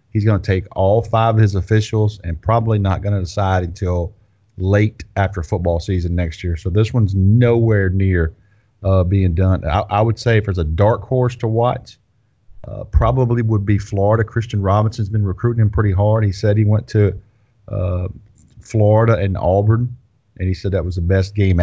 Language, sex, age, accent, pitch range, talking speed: English, male, 40-59, American, 95-110 Hz, 195 wpm